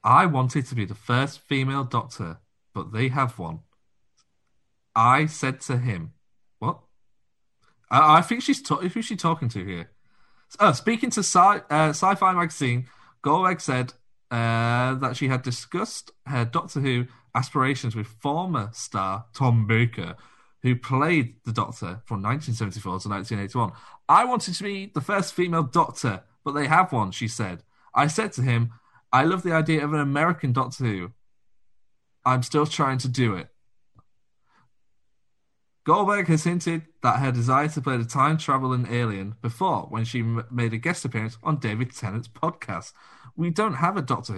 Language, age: English, 30-49